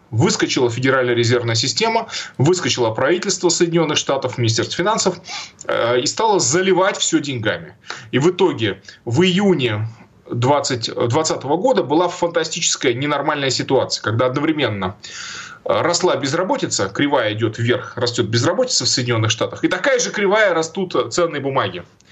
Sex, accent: male, native